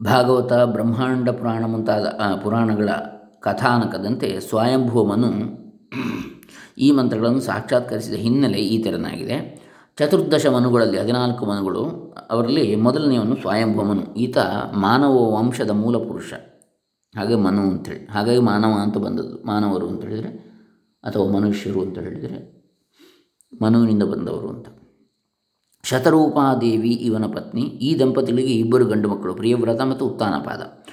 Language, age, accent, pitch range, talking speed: Kannada, 20-39, native, 110-130 Hz, 105 wpm